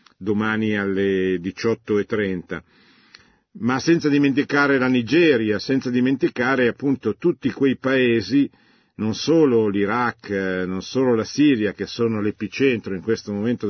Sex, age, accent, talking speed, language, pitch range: male, 50-69, native, 120 wpm, Italian, 100-130 Hz